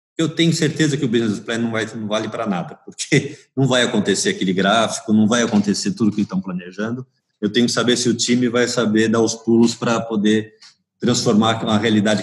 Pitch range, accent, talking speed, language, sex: 100-160 Hz, Brazilian, 210 wpm, Portuguese, male